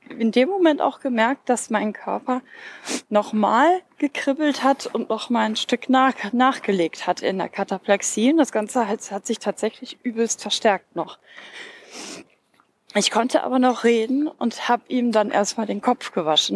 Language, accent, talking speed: German, German, 155 wpm